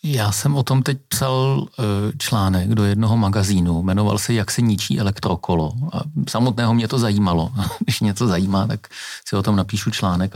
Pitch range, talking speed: 90-110 Hz, 180 wpm